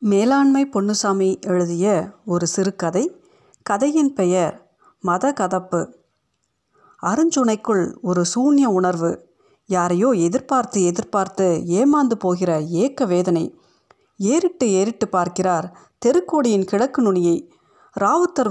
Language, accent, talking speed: Tamil, native, 90 wpm